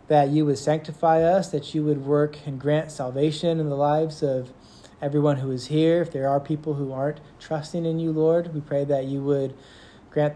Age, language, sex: 30-49, English, male